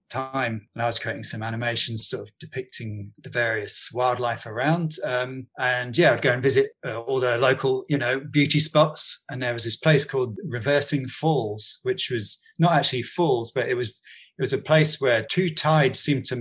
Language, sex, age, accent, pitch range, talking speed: English, male, 30-49, British, 120-155 Hz, 200 wpm